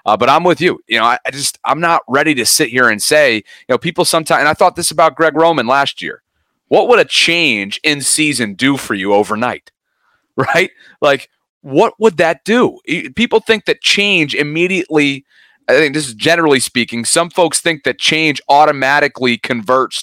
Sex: male